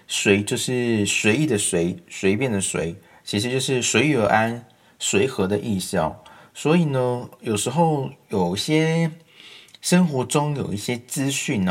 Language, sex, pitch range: Chinese, male, 95-130 Hz